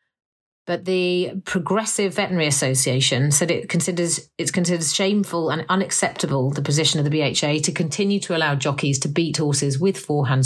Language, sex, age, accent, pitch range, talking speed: English, female, 30-49, British, 145-180 Hz, 160 wpm